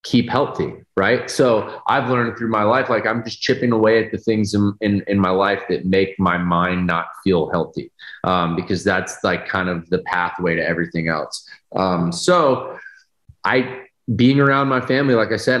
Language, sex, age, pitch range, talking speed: English, male, 20-39, 85-110 Hz, 190 wpm